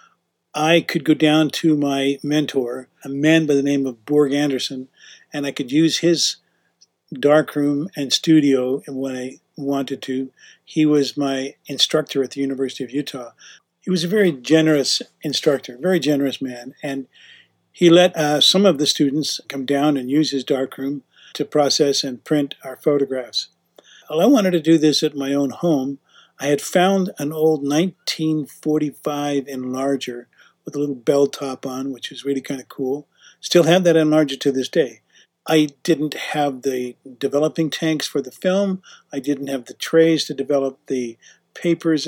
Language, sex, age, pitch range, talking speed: English, male, 50-69, 135-160 Hz, 170 wpm